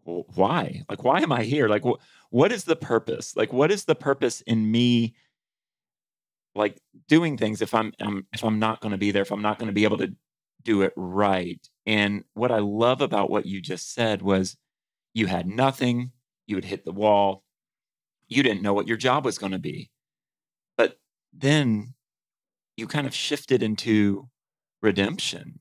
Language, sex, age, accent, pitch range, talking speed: English, male, 30-49, American, 105-150 Hz, 180 wpm